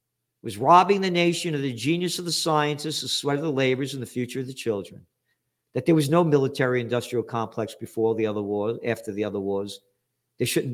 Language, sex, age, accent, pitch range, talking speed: English, male, 50-69, American, 110-145 Hz, 205 wpm